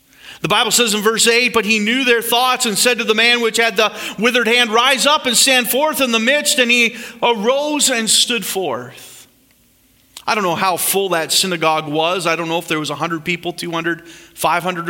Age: 40-59